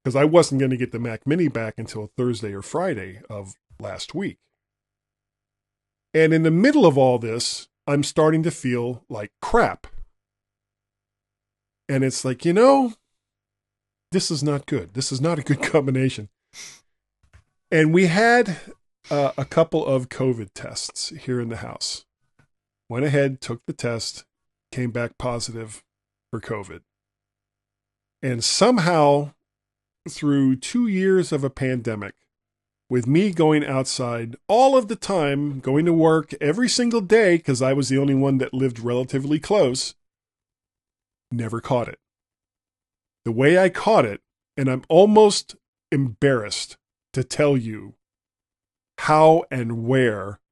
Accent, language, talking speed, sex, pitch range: American, English, 140 wpm, male, 115-160 Hz